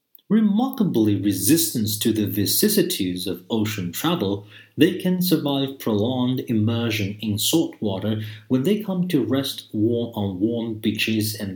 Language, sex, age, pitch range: Chinese, male, 40-59, 100-125 Hz